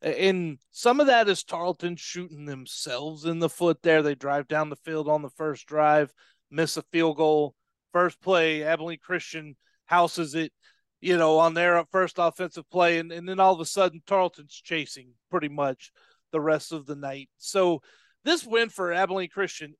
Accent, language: American, English